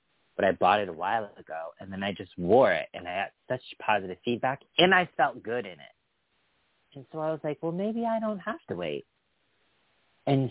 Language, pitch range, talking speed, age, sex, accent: English, 100-125 Hz, 215 wpm, 30-49, male, American